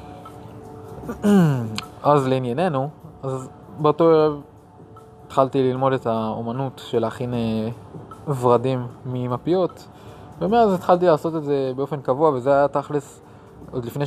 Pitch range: 125-155 Hz